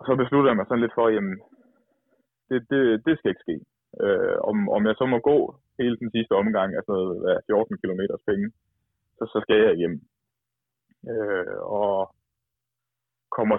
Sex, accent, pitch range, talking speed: male, native, 105-130 Hz, 180 wpm